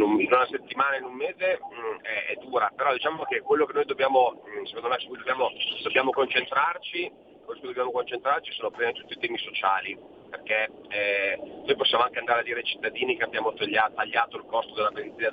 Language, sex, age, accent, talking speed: Italian, male, 30-49, native, 205 wpm